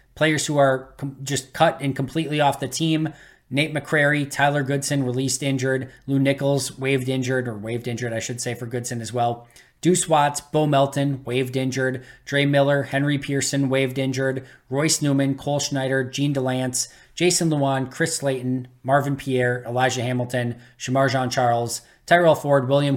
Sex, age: male, 20-39